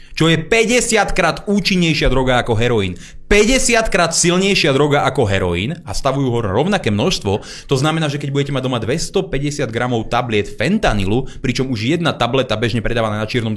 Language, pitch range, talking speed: Slovak, 130-195 Hz, 155 wpm